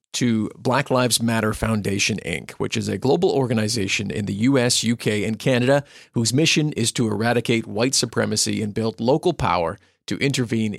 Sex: male